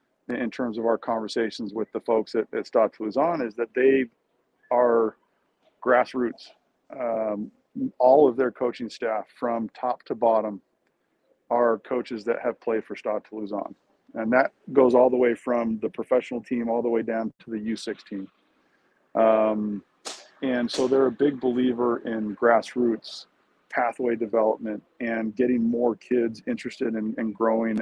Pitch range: 110-120 Hz